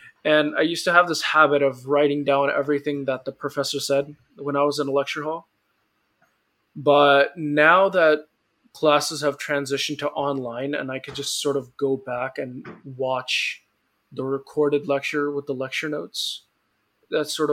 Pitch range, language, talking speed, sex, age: 135-155 Hz, English, 170 wpm, male, 20-39